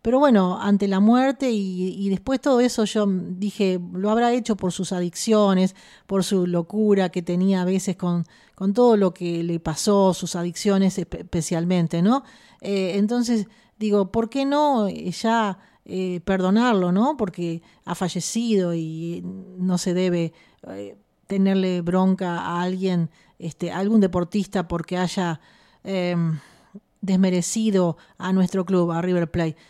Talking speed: 145 wpm